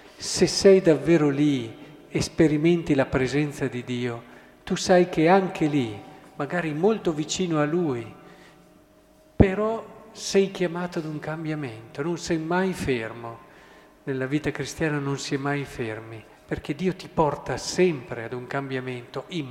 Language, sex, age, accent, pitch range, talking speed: Italian, male, 50-69, native, 135-165 Hz, 140 wpm